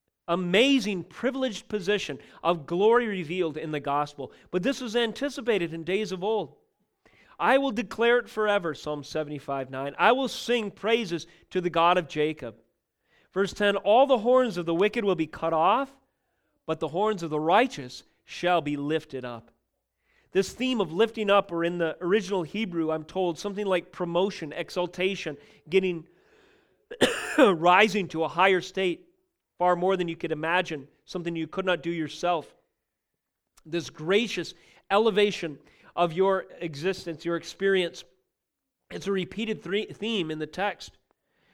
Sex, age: male, 40-59